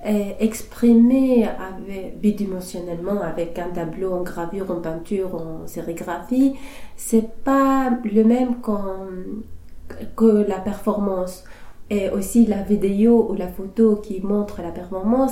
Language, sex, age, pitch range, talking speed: French, female, 30-49, 185-225 Hz, 125 wpm